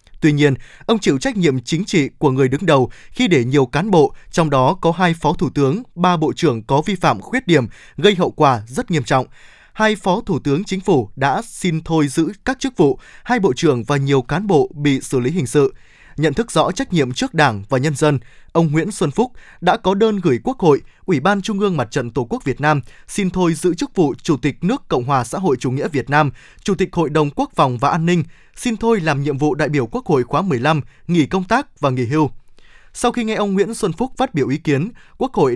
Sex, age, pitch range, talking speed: male, 20-39, 140-190 Hz, 250 wpm